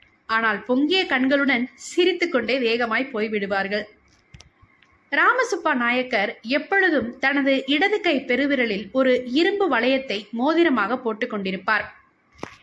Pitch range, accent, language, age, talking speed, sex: 230-330 Hz, native, Tamil, 20-39, 85 wpm, female